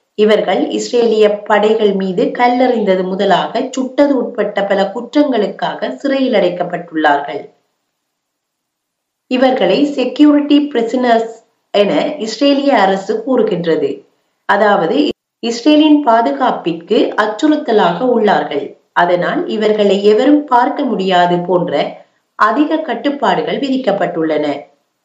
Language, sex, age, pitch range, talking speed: Tamil, female, 30-49, 195-260 Hz, 75 wpm